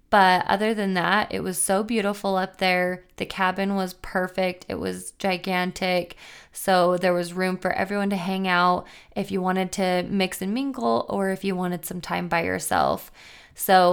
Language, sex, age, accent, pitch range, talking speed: English, female, 20-39, American, 180-195 Hz, 180 wpm